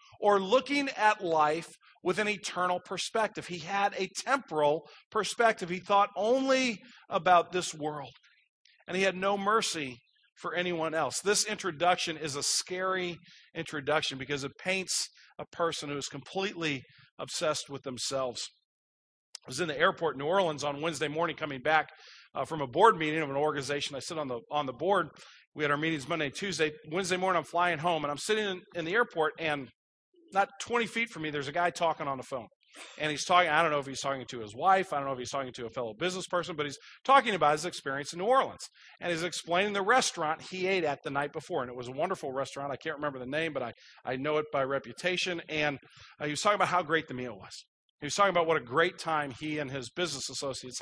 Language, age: English, 40-59